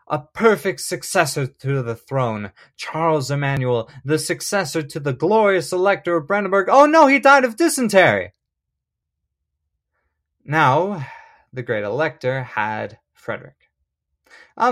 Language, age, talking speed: English, 20-39, 120 wpm